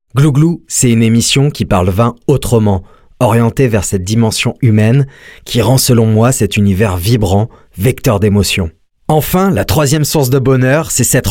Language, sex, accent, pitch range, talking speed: French, male, French, 105-130 Hz, 160 wpm